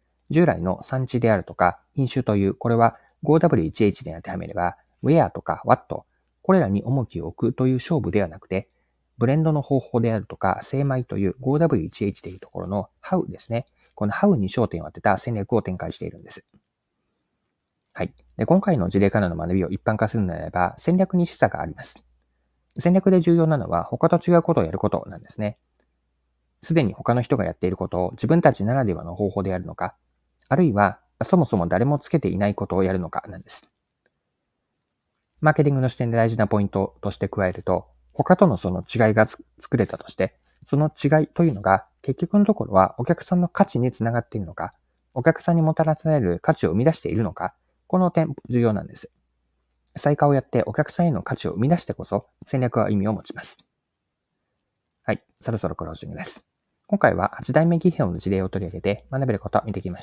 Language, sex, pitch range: Japanese, male, 95-145 Hz